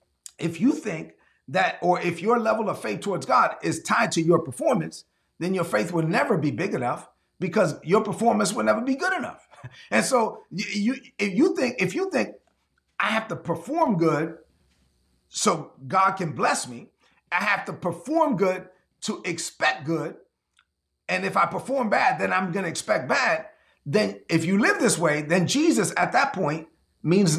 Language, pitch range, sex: English, 160-220 Hz, male